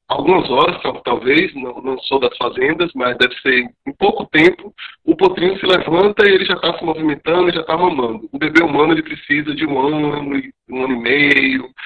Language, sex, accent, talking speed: Portuguese, male, Brazilian, 200 wpm